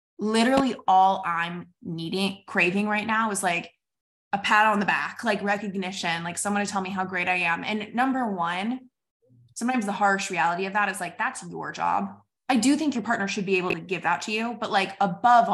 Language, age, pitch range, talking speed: English, 20-39, 195-245 Hz, 210 wpm